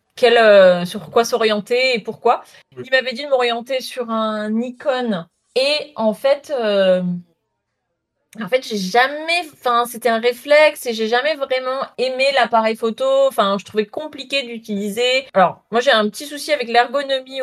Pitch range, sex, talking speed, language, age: 205-250 Hz, female, 160 wpm, French, 20-39